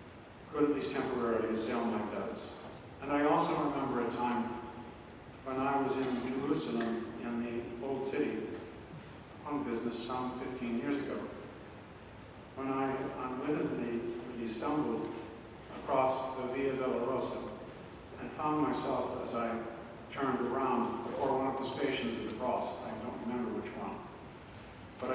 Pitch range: 115-135 Hz